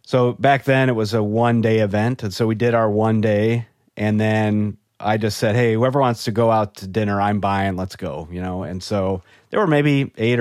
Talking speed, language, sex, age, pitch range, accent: 235 wpm, English, male, 30-49, 100-120 Hz, American